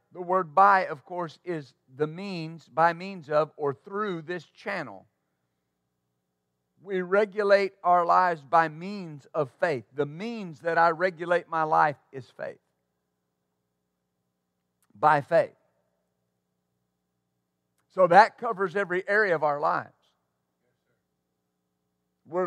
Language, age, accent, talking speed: English, 50-69, American, 115 wpm